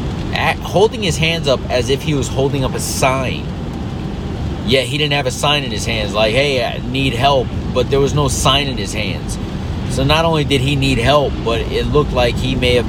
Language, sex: English, male